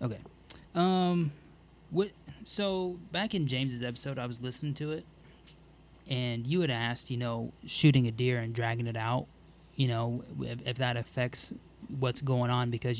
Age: 20-39